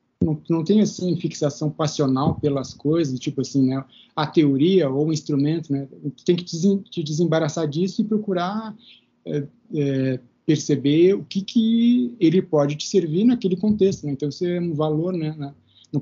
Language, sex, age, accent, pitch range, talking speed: Portuguese, male, 20-39, Brazilian, 145-190 Hz, 165 wpm